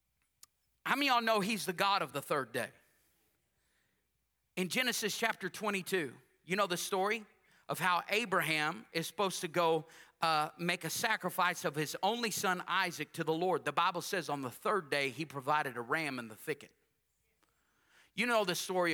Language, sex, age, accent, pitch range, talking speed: English, male, 40-59, American, 165-215 Hz, 180 wpm